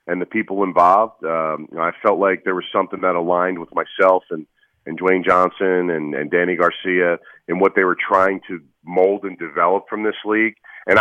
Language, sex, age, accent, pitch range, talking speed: English, male, 40-59, American, 95-115 Hz, 205 wpm